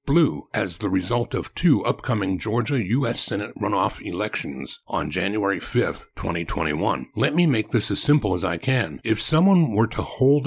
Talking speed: 170 wpm